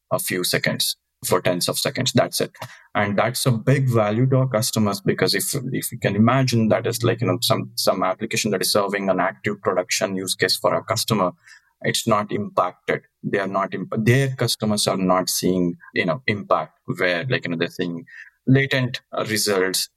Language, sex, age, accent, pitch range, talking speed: English, male, 20-39, Indian, 100-130 Hz, 195 wpm